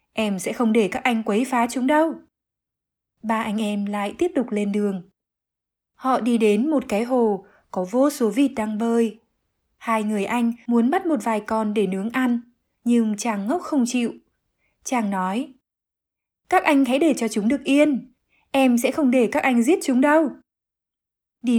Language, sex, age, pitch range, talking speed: Vietnamese, female, 20-39, 215-265 Hz, 185 wpm